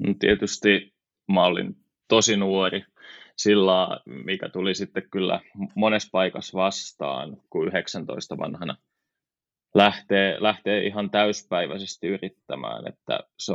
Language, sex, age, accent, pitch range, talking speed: Finnish, male, 20-39, native, 95-105 Hz, 105 wpm